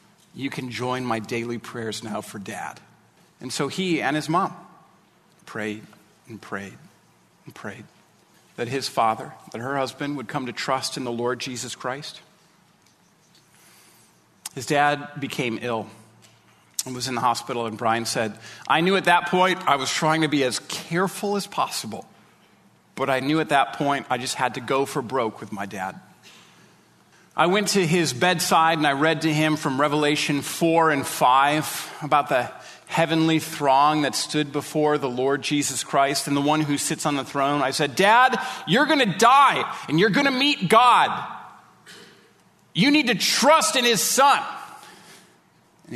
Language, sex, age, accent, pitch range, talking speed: English, male, 40-59, American, 125-165 Hz, 170 wpm